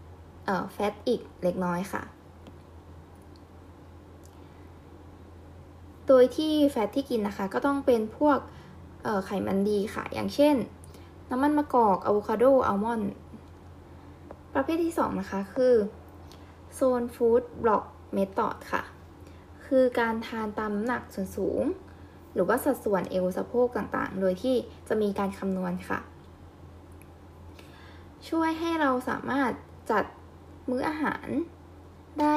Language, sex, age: Thai, female, 10-29